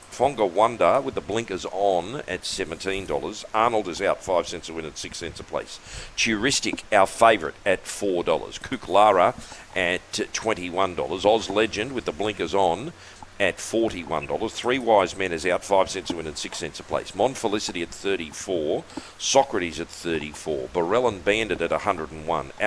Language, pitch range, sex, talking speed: English, 85-105 Hz, male, 170 wpm